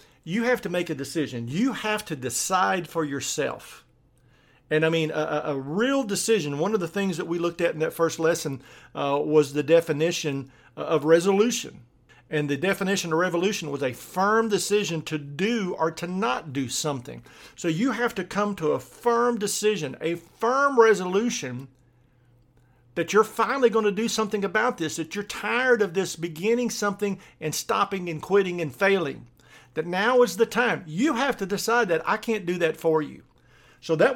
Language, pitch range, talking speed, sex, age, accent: English, 145-205 Hz, 185 wpm, male, 50-69, American